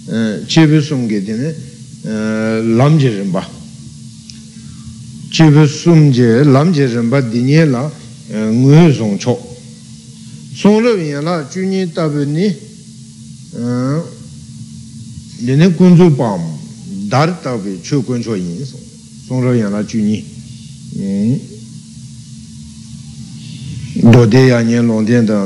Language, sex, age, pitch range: Italian, male, 60-79, 115-155 Hz